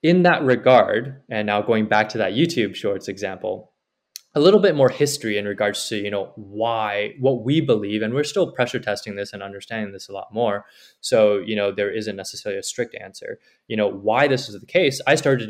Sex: male